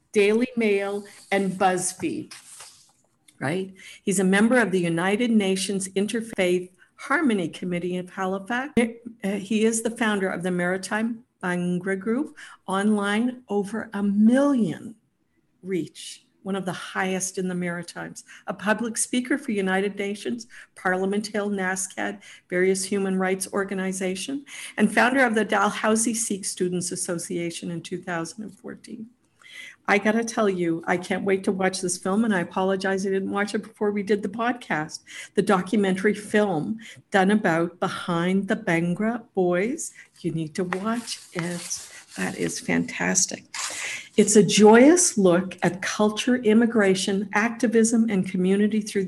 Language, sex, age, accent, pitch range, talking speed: English, female, 50-69, American, 185-220 Hz, 140 wpm